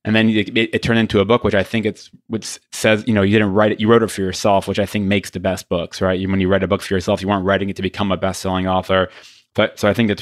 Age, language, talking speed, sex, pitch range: 20-39, English, 315 wpm, male, 100-110 Hz